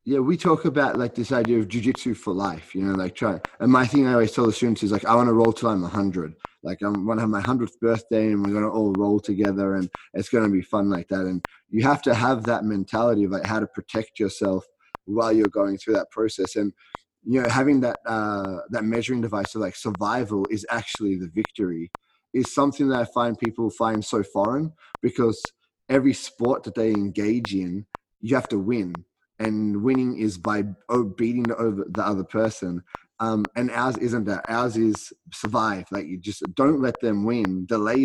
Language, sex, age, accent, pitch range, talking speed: English, male, 20-39, Australian, 100-120 Hz, 215 wpm